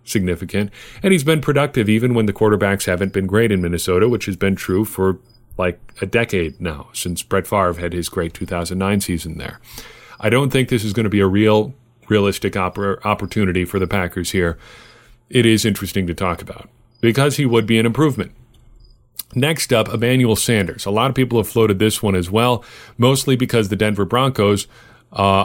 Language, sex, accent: English, male, American